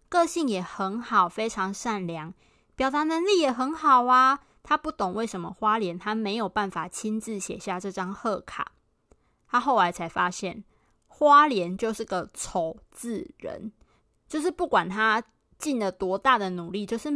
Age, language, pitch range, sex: 20-39, Chinese, 185-240 Hz, female